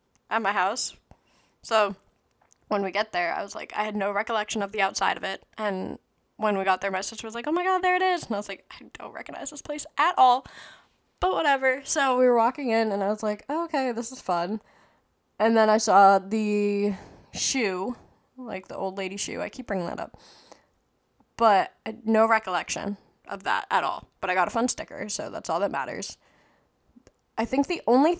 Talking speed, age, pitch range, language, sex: 215 wpm, 10-29, 195-240 Hz, English, female